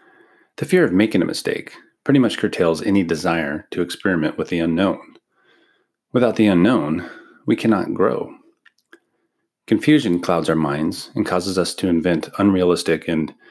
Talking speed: 145 wpm